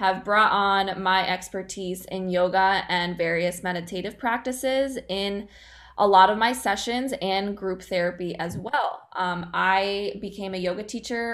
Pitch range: 180-210 Hz